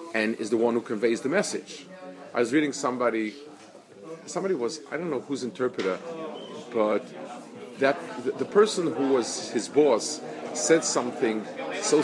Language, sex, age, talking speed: English, male, 40-59, 140 wpm